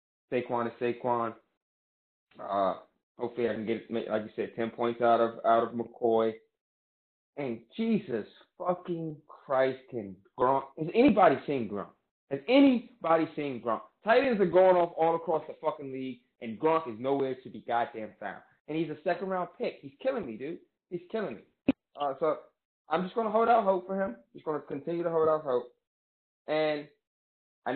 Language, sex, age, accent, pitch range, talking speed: English, male, 20-39, American, 115-165 Hz, 175 wpm